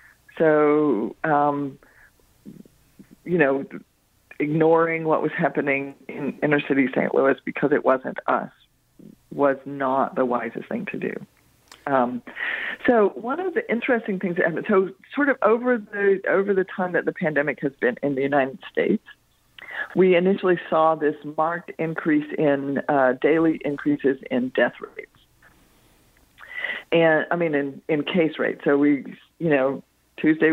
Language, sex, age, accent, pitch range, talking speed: English, female, 50-69, American, 140-180 Hz, 145 wpm